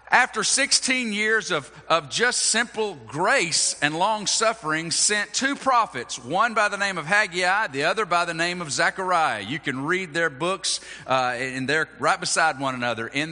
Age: 40-59